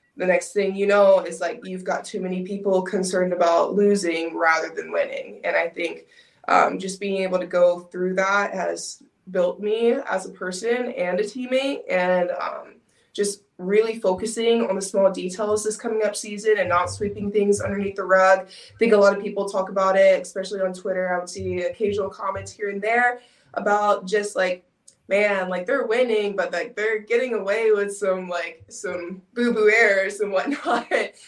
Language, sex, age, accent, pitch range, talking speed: English, female, 20-39, American, 180-215 Hz, 190 wpm